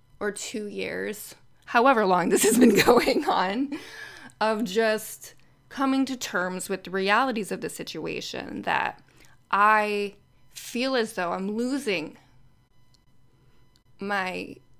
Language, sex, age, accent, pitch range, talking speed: English, female, 20-39, American, 140-225 Hz, 120 wpm